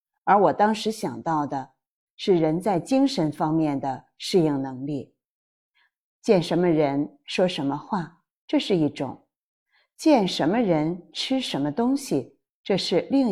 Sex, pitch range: female, 150-210 Hz